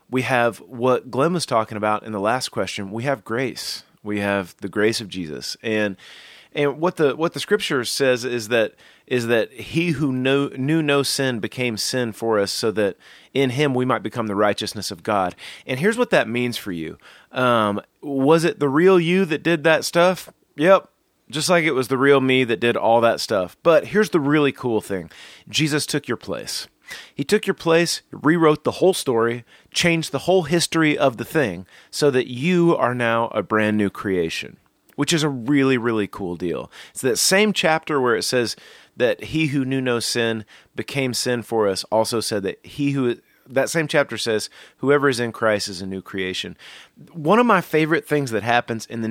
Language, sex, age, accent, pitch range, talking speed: English, male, 30-49, American, 110-155 Hz, 205 wpm